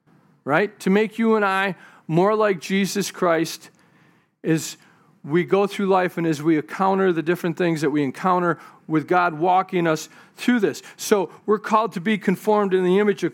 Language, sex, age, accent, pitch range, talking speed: English, male, 40-59, American, 170-215 Hz, 185 wpm